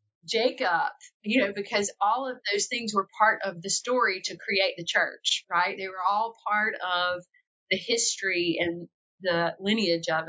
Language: English